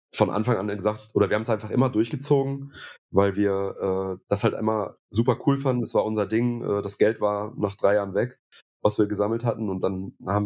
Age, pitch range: 30-49, 95-115 Hz